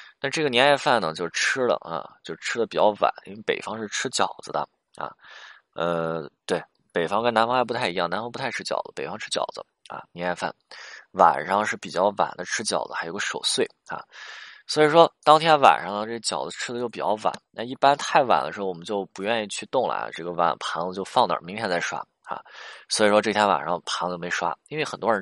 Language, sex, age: Chinese, male, 20-39